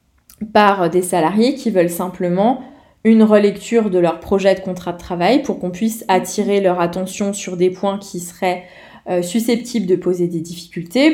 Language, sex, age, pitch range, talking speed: French, female, 20-39, 180-230 Hz, 175 wpm